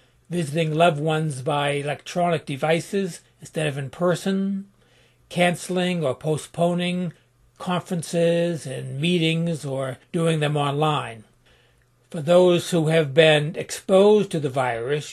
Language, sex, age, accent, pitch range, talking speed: English, male, 60-79, American, 145-175 Hz, 115 wpm